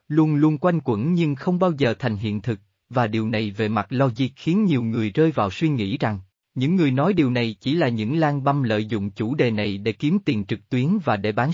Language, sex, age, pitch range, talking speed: Vietnamese, male, 20-39, 110-160 Hz, 250 wpm